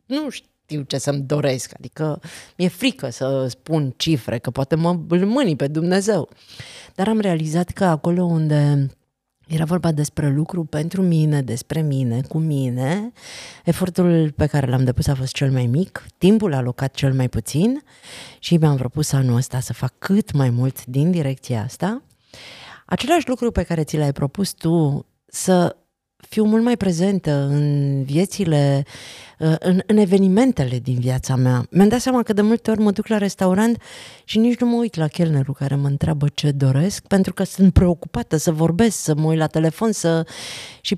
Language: Romanian